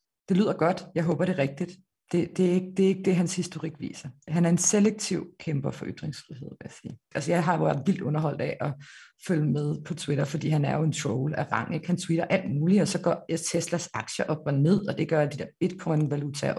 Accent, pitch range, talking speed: native, 155-185 Hz, 245 wpm